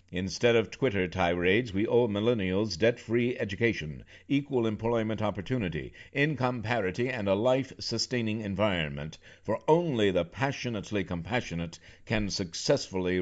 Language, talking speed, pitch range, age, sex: English, 115 wpm, 85-110 Hz, 60-79, male